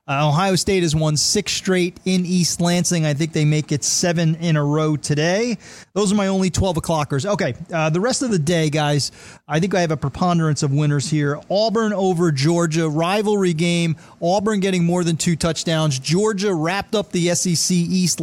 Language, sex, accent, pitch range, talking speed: English, male, American, 160-190 Hz, 200 wpm